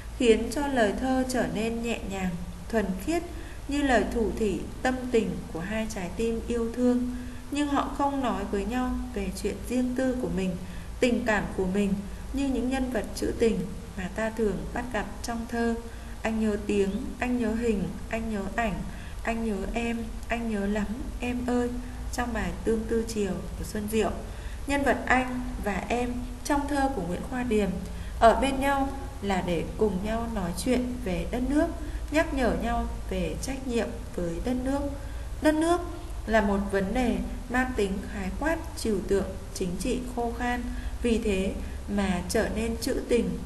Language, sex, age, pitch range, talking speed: Vietnamese, female, 20-39, 205-250 Hz, 180 wpm